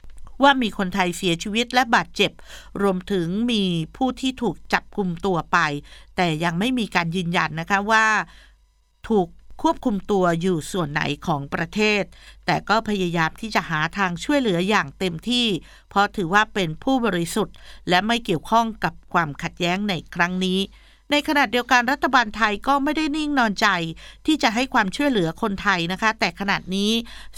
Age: 50-69